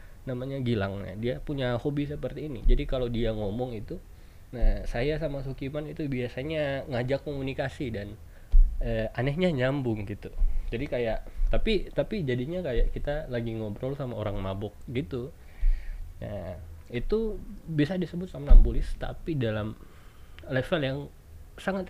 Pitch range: 105-140 Hz